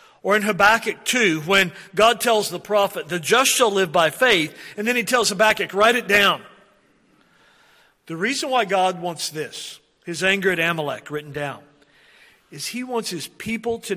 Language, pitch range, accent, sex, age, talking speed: English, 155-205 Hz, American, male, 50-69, 175 wpm